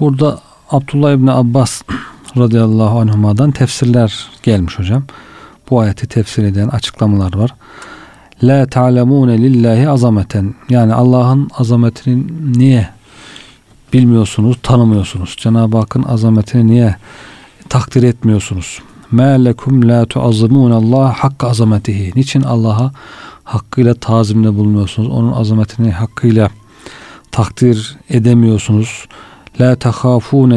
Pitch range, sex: 110-125 Hz, male